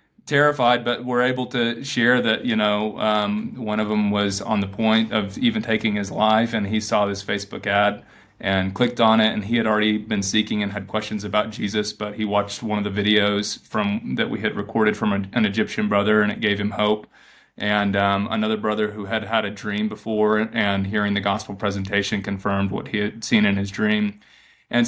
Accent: American